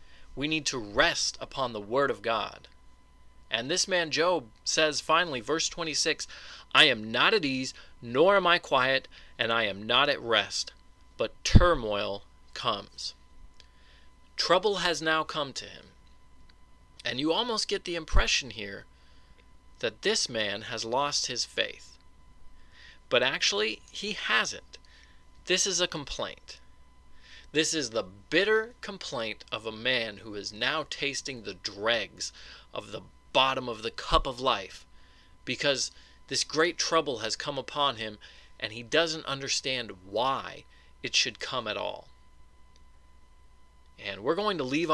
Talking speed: 145 wpm